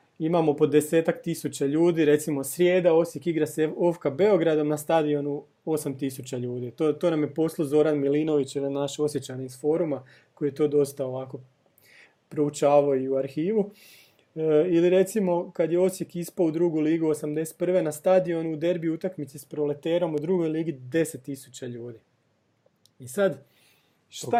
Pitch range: 145-180 Hz